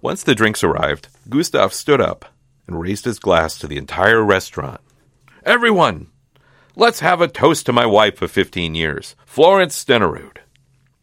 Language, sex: English, male